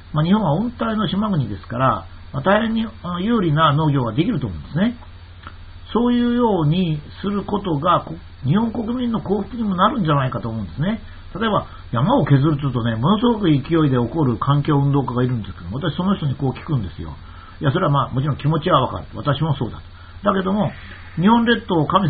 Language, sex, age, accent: Japanese, male, 50-69, native